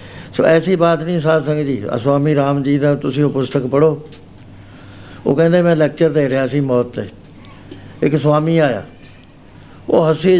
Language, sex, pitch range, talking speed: Punjabi, male, 125-160 Hz, 175 wpm